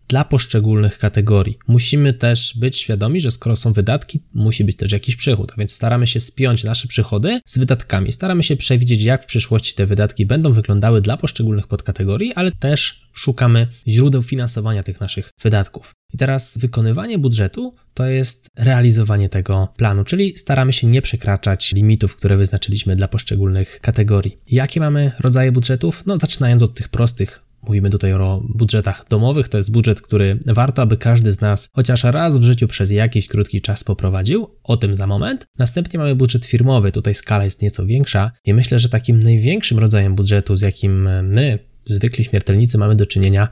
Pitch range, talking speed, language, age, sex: 100-125 Hz, 175 wpm, Polish, 20-39, male